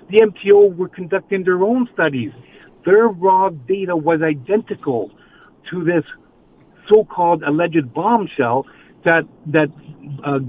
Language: English